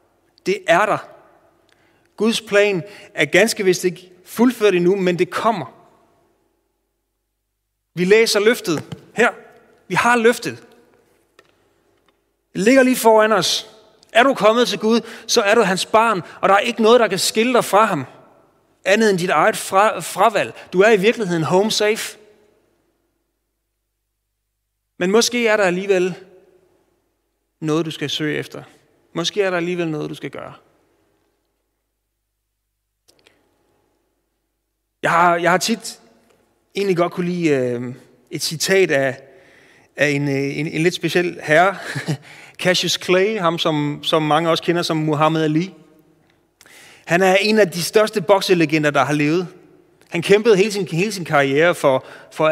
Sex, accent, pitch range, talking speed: male, native, 155-220 Hz, 140 wpm